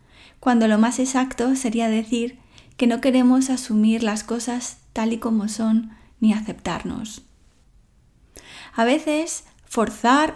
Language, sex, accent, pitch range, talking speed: English, female, Spanish, 215-250 Hz, 120 wpm